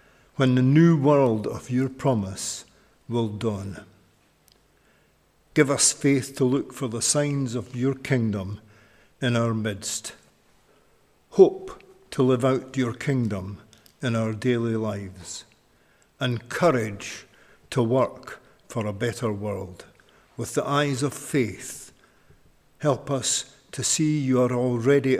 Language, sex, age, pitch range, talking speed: English, male, 60-79, 110-135 Hz, 125 wpm